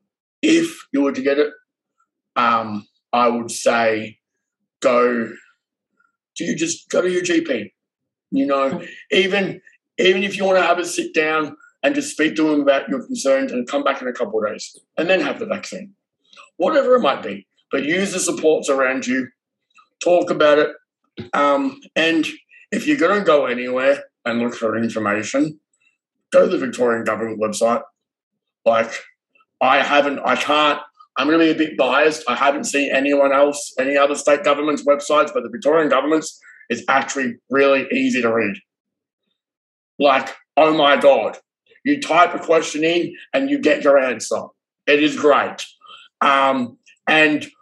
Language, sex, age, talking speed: English, male, 50-69, 170 wpm